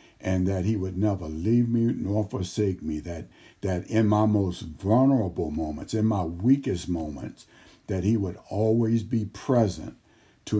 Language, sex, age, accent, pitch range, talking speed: English, male, 60-79, American, 90-110 Hz, 160 wpm